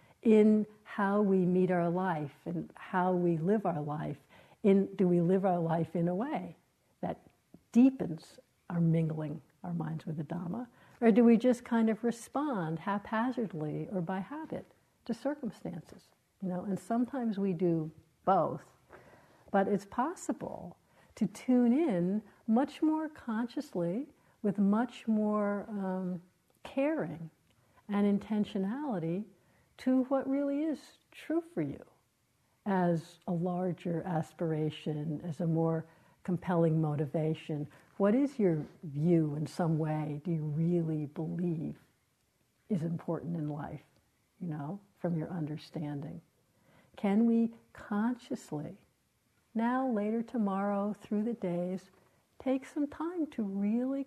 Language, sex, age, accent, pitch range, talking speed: English, female, 60-79, American, 165-230 Hz, 130 wpm